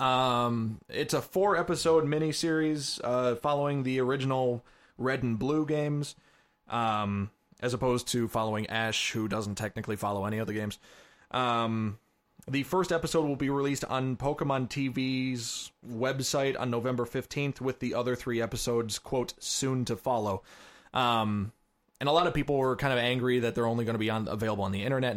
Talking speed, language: 170 wpm, English